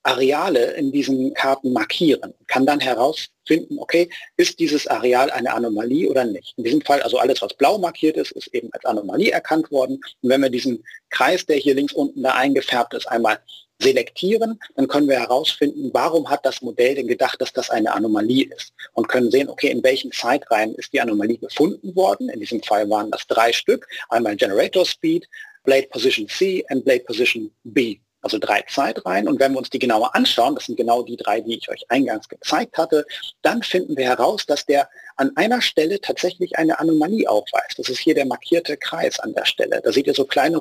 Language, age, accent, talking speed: German, 40-59, German, 200 wpm